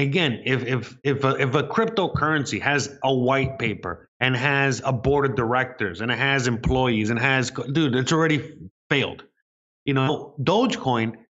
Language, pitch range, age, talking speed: English, 120-145 Hz, 30-49, 165 wpm